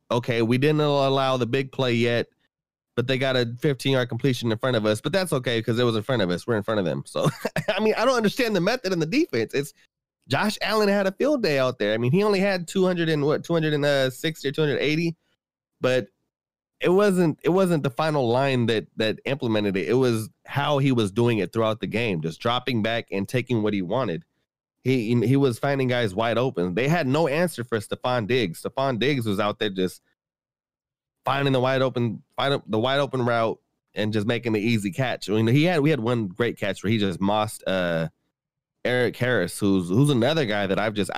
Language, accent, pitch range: English, American, 110-140 Hz